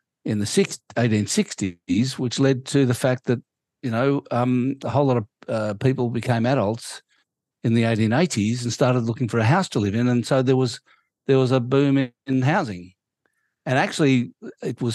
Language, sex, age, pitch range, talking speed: English, male, 60-79, 110-135 Hz, 190 wpm